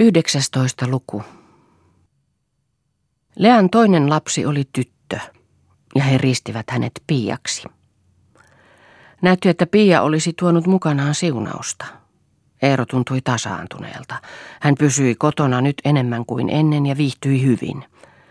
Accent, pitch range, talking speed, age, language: native, 120-150 Hz, 105 wpm, 40-59, Finnish